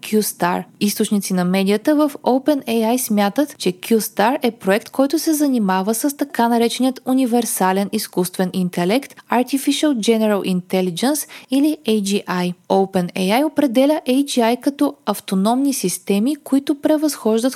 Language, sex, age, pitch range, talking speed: Bulgarian, female, 20-39, 190-270 Hz, 115 wpm